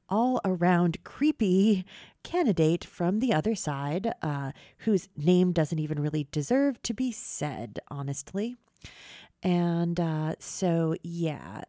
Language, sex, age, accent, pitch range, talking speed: English, female, 30-49, American, 150-180 Hz, 115 wpm